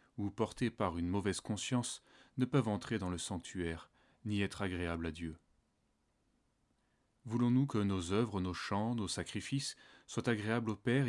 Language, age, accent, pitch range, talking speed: French, 30-49, French, 90-115 Hz, 155 wpm